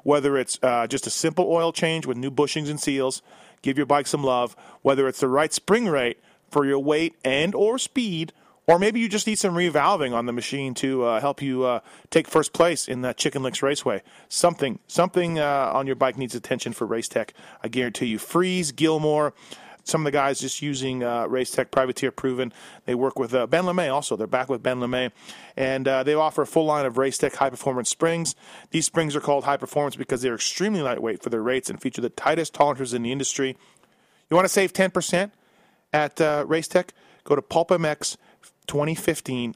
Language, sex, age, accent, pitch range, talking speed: English, male, 30-49, American, 130-165 Hz, 205 wpm